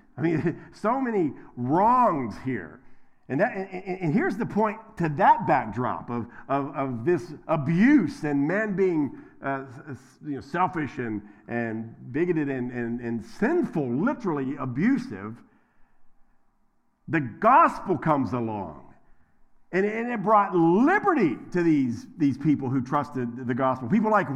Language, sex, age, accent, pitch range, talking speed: English, male, 50-69, American, 125-205 Hz, 145 wpm